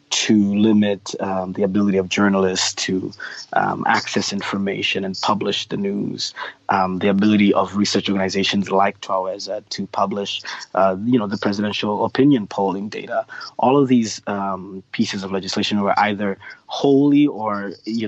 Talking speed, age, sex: 150 wpm, 20-39, male